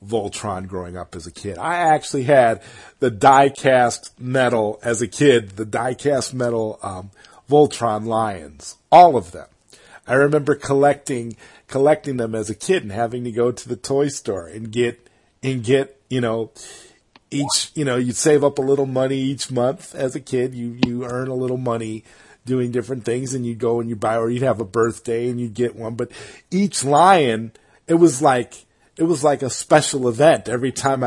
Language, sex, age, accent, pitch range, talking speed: English, male, 40-59, American, 105-130 Hz, 195 wpm